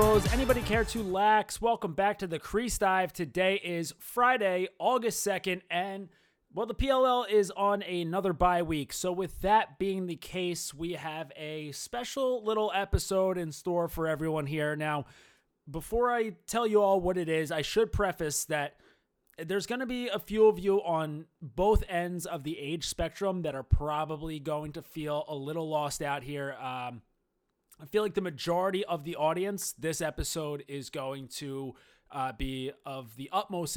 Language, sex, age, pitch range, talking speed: English, male, 30-49, 145-195 Hz, 175 wpm